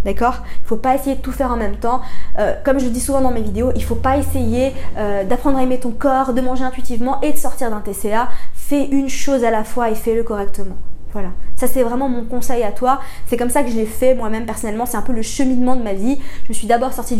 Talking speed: 275 wpm